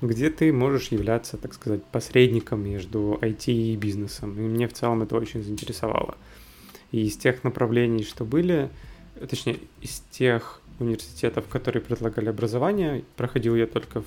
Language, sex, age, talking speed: Russian, male, 20-39, 145 wpm